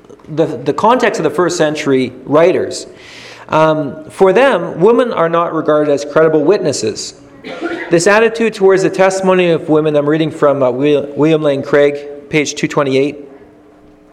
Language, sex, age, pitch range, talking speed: English, male, 40-59, 145-190 Hz, 145 wpm